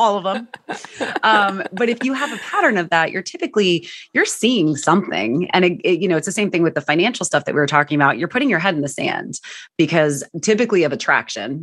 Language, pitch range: English, 145-185 Hz